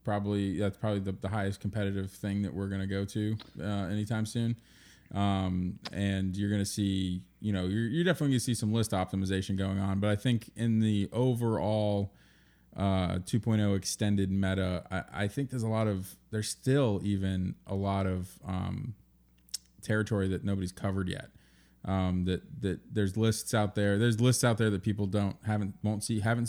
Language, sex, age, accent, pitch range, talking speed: English, male, 20-39, American, 95-105 Hz, 185 wpm